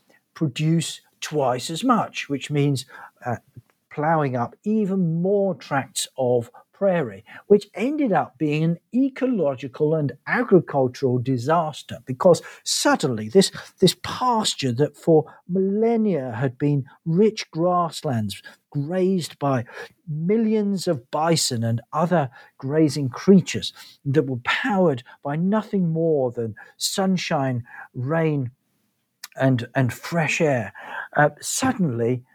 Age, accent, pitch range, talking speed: 50-69, British, 135-190 Hz, 110 wpm